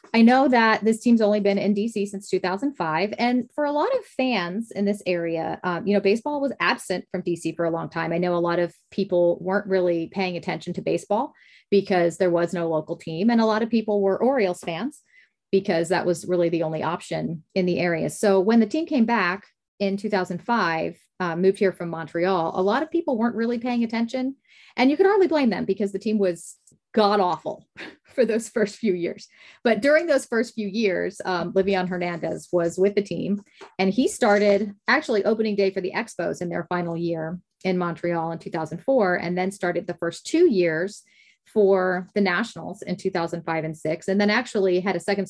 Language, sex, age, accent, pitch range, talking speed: English, female, 30-49, American, 175-220 Hz, 205 wpm